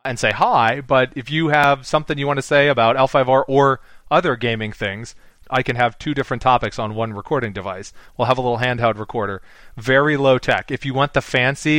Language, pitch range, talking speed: English, 120-145 Hz, 215 wpm